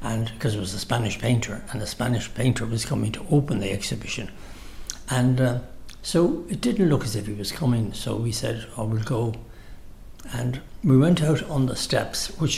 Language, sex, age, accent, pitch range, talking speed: English, male, 60-79, Irish, 105-145 Hz, 200 wpm